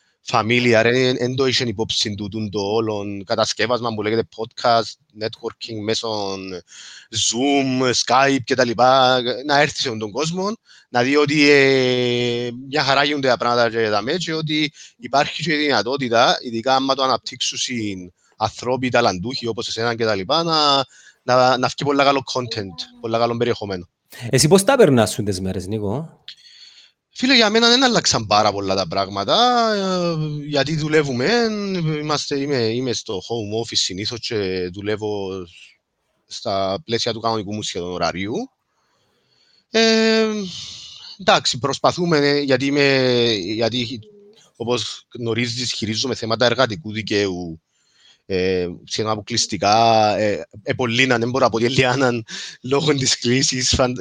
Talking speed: 90 wpm